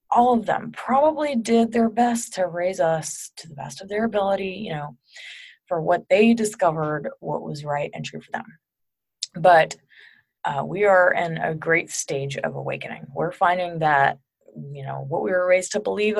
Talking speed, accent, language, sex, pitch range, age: 185 wpm, American, English, female, 155-205 Hz, 20-39